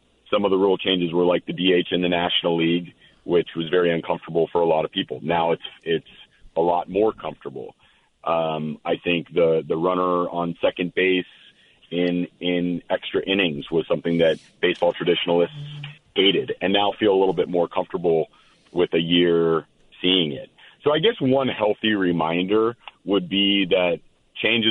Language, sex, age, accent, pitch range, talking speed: English, male, 40-59, American, 85-105 Hz, 170 wpm